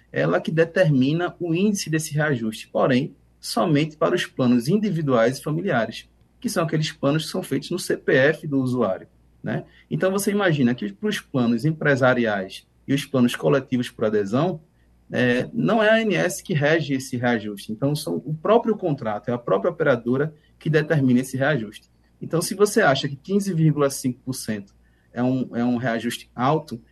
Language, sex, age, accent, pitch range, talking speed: Portuguese, male, 20-39, Brazilian, 115-155 Hz, 165 wpm